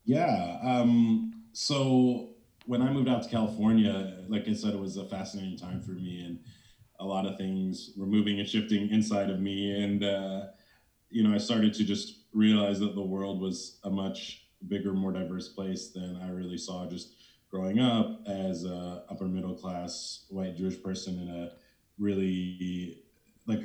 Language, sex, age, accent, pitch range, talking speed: English, male, 30-49, American, 95-110 Hz, 170 wpm